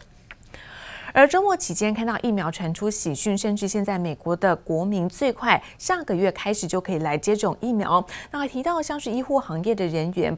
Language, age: Chinese, 30-49